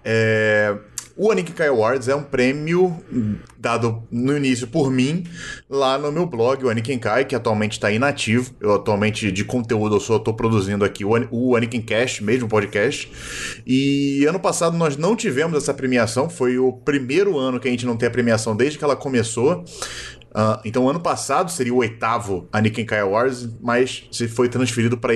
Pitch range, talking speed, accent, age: 120-160 Hz, 180 wpm, Brazilian, 20-39